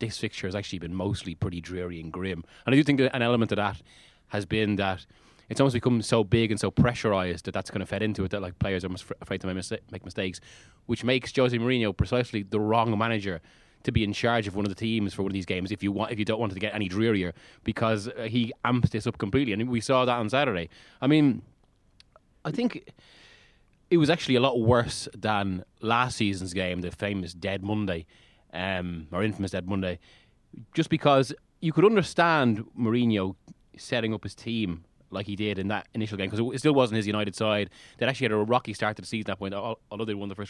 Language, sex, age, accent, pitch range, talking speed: English, male, 20-39, Irish, 95-120 Hz, 235 wpm